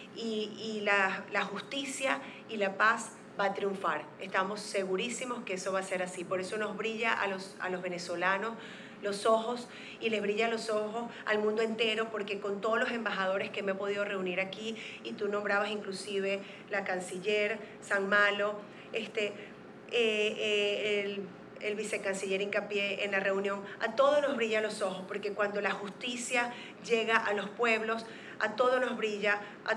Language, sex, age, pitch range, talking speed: Spanish, female, 30-49, 195-220 Hz, 175 wpm